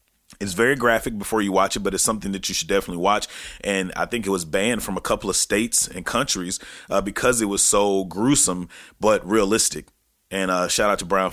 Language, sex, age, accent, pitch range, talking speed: English, male, 30-49, American, 95-125 Hz, 225 wpm